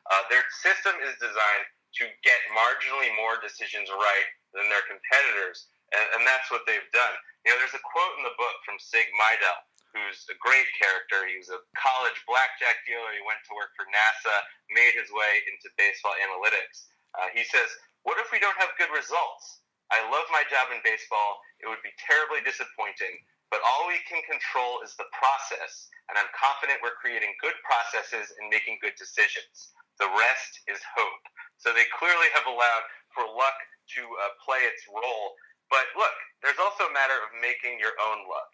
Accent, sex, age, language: American, male, 30-49, English